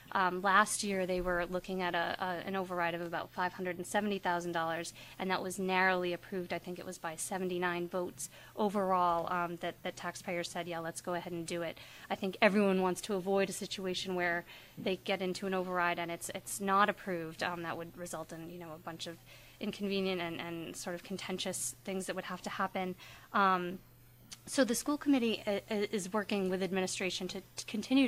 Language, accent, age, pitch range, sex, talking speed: English, American, 20-39, 175-195 Hz, female, 195 wpm